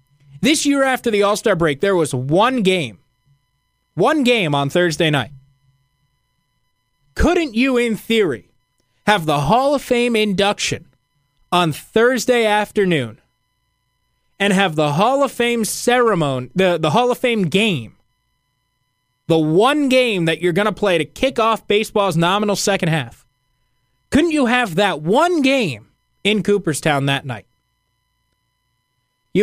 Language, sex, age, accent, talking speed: English, male, 20-39, American, 135 wpm